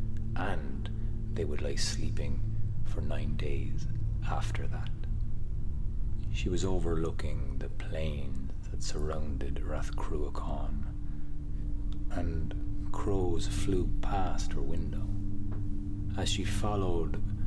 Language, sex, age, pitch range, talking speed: English, male, 30-49, 75-100 Hz, 95 wpm